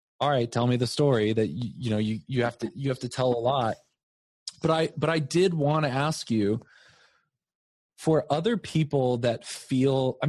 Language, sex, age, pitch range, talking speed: English, male, 20-39, 115-145 Hz, 205 wpm